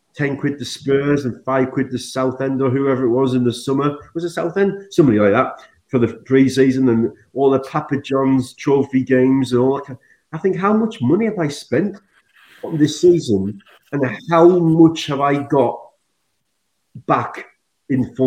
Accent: British